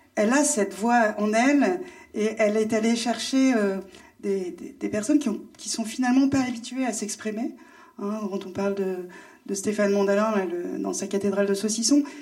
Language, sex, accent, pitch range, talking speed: French, female, French, 200-245 Hz, 180 wpm